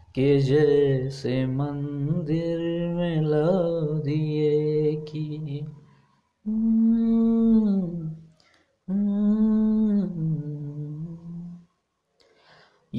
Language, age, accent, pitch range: Marathi, 20-39, native, 150-225 Hz